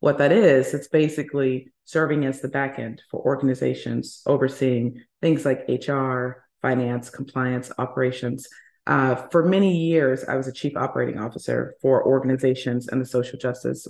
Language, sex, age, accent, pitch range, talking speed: English, female, 30-49, American, 125-150 Hz, 150 wpm